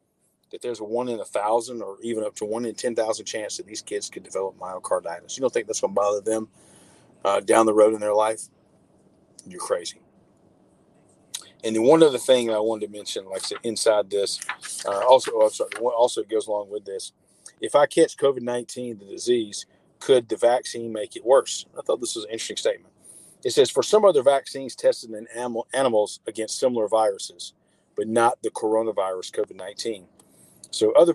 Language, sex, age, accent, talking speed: English, male, 40-59, American, 195 wpm